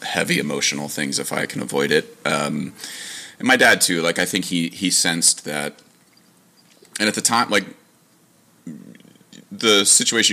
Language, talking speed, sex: English, 155 wpm, male